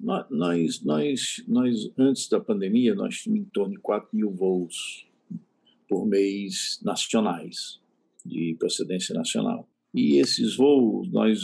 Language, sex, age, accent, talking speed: Portuguese, male, 50-69, Brazilian, 120 wpm